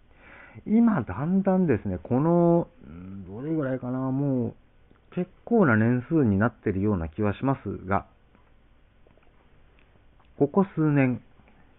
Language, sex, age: Japanese, male, 50-69